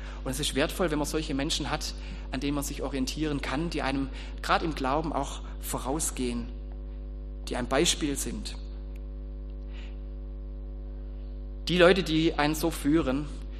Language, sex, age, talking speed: German, male, 30-49, 140 wpm